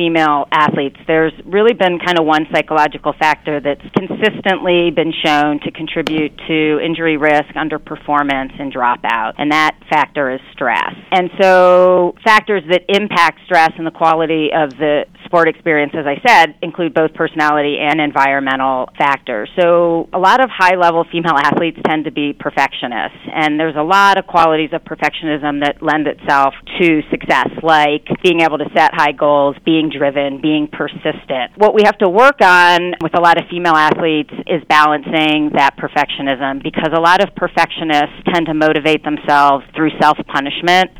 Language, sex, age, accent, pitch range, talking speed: English, female, 40-59, American, 150-175 Hz, 160 wpm